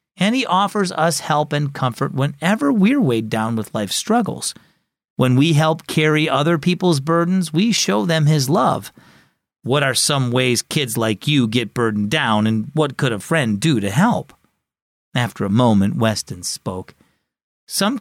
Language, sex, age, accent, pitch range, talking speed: English, male, 40-59, American, 125-185 Hz, 165 wpm